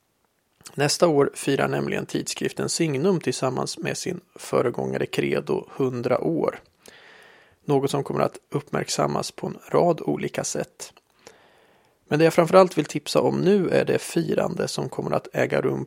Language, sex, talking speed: Swedish, male, 150 wpm